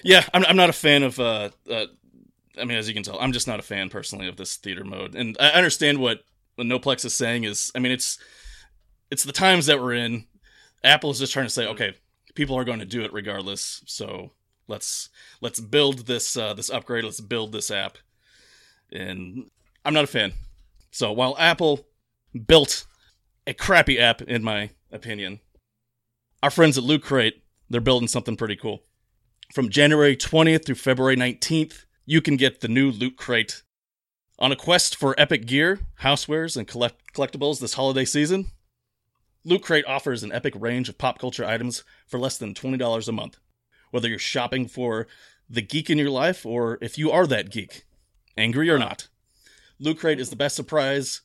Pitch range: 115-145 Hz